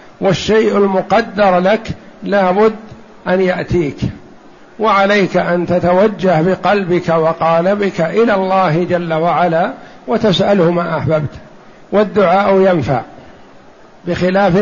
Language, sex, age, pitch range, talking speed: Arabic, male, 60-79, 180-205 Hz, 85 wpm